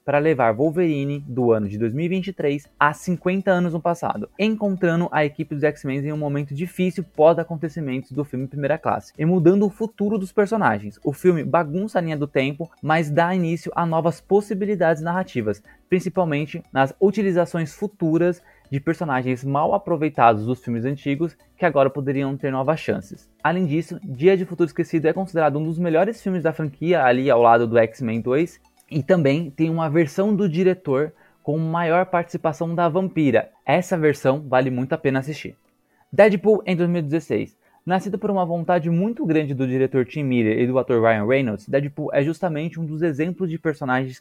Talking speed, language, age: 175 wpm, Portuguese, 20-39